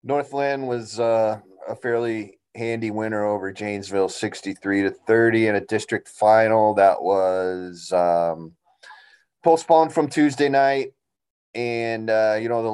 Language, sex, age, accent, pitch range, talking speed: English, male, 30-49, American, 105-135 Hz, 130 wpm